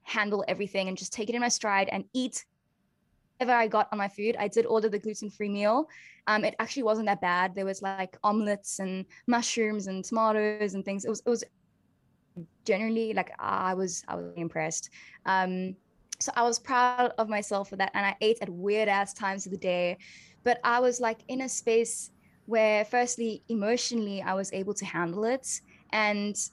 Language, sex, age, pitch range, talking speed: English, female, 10-29, 200-235 Hz, 195 wpm